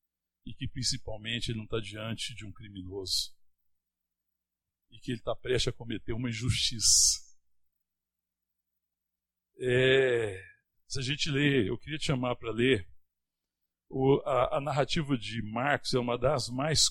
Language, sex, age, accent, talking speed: Portuguese, male, 60-79, Brazilian, 135 wpm